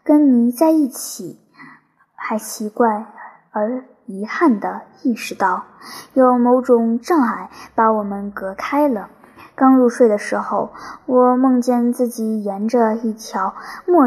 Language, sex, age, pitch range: Chinese, male, 10-29, 220-270 Hz